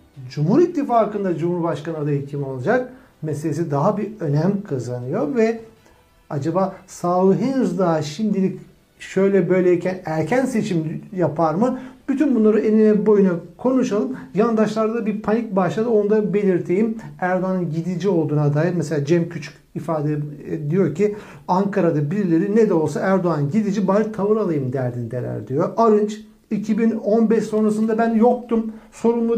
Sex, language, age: male, Turkish, 60-79